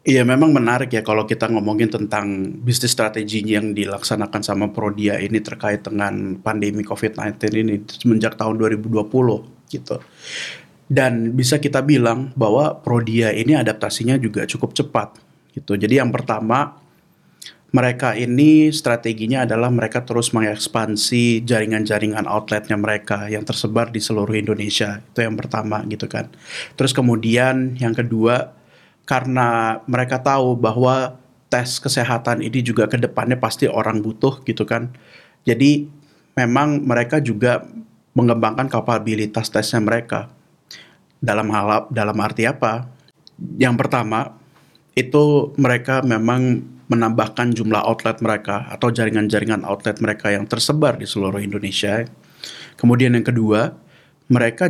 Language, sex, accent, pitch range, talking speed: Indonesian, male, native, 105-125 Hz, 125 wpm